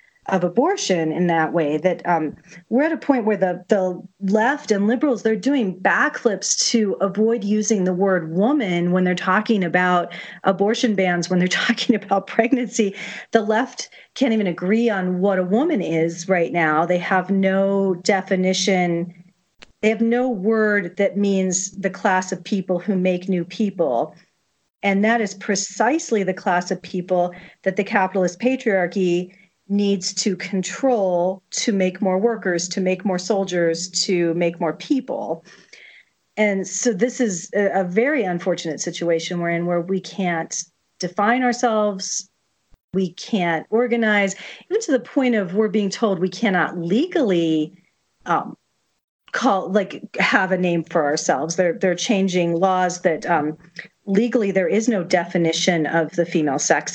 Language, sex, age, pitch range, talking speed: English, female, 40-59, 180-215 Hz, 155 wpm